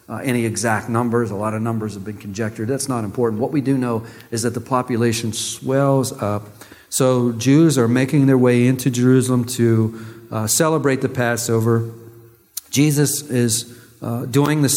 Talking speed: 170 wpm